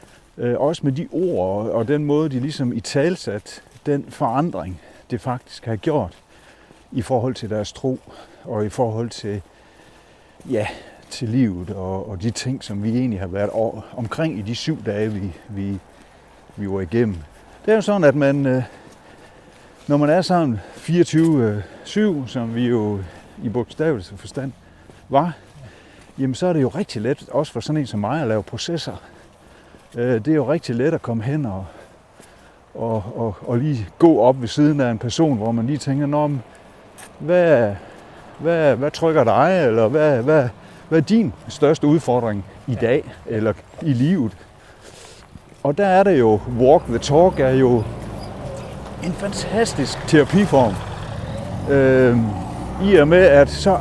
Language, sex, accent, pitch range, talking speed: Danish, male, native, 110-150 Hz, 155 wpm